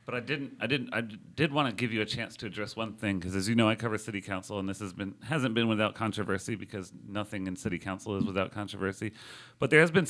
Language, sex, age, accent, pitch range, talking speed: English, male, 40-59, American, 95-120 Hz, 265 wpm